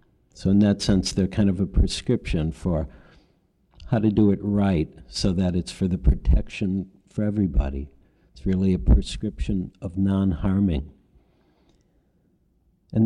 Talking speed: 140 wpm